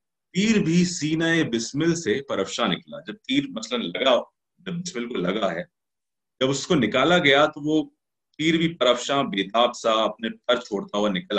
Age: 30-49